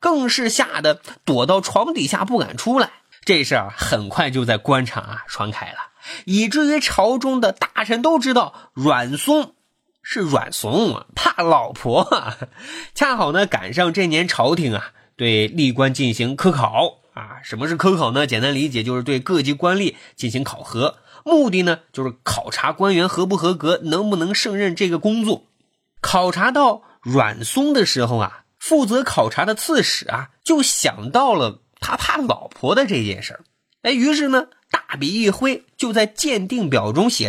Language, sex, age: Chinese, male, 20-39